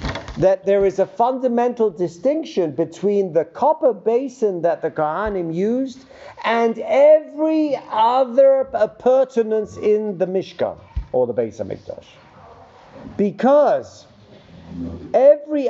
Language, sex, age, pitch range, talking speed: English, male, 50-69, 200-295 Hz, 105 wpm